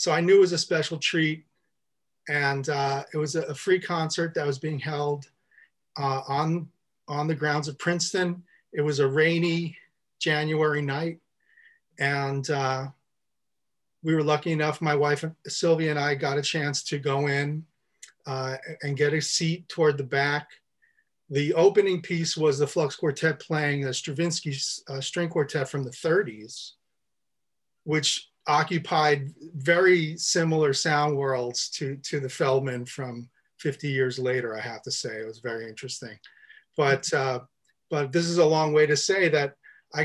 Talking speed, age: 155 wpm, 40-59